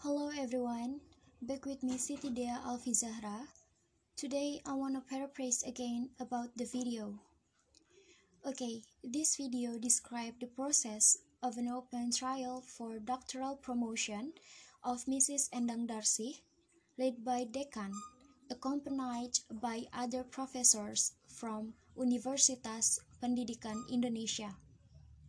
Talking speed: 105 wpm